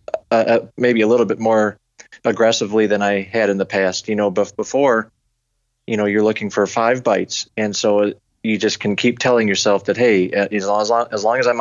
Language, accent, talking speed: English, American, 195 wpm